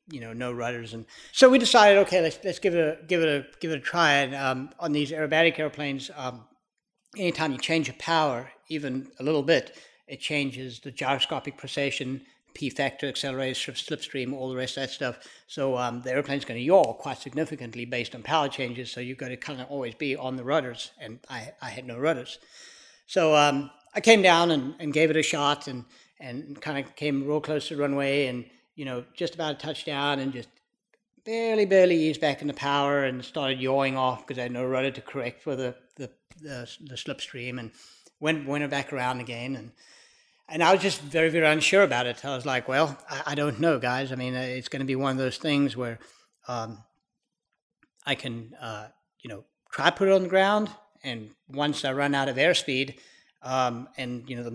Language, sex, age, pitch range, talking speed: English, male, 60-79, 130-155 Hz, 215 wpm